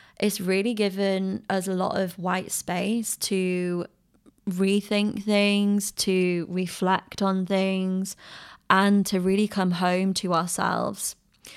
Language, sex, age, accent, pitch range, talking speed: English, female, 20-39, British, 185-205 Hz, 120 wpm